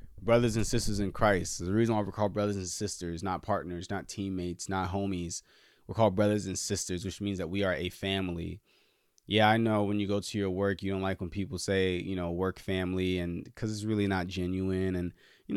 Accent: American